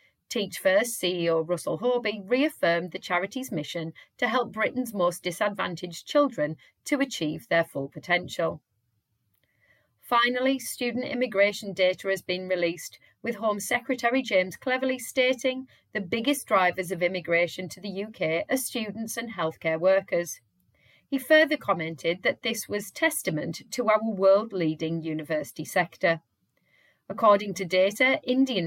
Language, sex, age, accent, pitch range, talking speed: English, female, 40-59, British, 165-235 Hz, 130 wpm